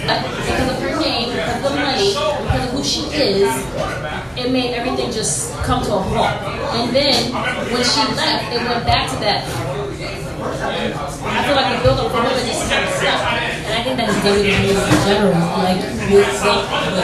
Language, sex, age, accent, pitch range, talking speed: English, female, 20-39, American, 145-205 Hz, 195 wpm